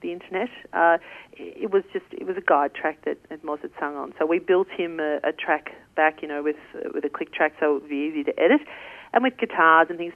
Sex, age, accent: female, 40-59, Australian